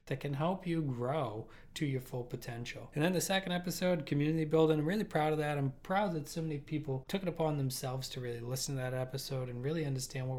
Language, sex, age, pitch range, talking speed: English, male, 20-39, 135-160 Hz, 235 wpm